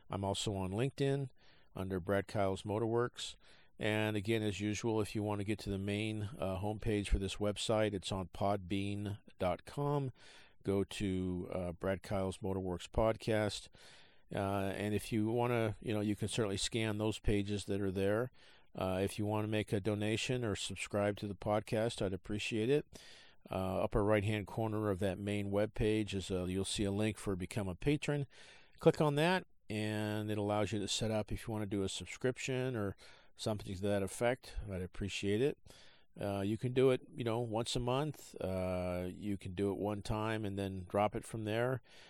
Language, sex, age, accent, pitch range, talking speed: English, male, 50-69, American, 100-115 Hz, 190 wpm